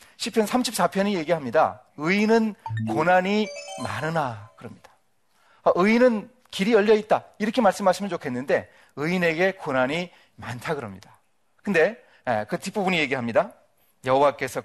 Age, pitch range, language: 40-59, 120-175 Hz, Korean